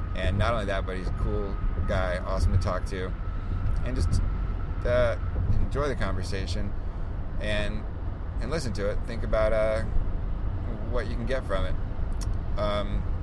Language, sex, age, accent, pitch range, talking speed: English, male, 30-49, American, 90-100 Hz, 155 wpm